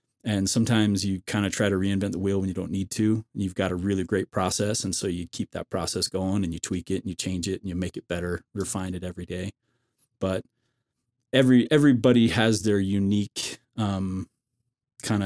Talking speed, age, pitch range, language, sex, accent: 210 wpm, 30-49, 95-115 Hz, English, male, American